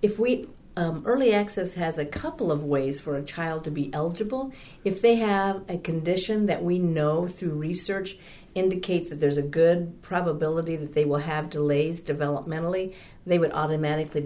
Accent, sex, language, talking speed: American, female, English, 175 wpm